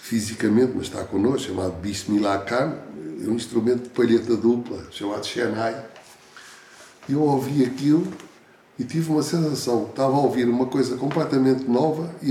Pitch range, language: 115-140 Hz, Portuguese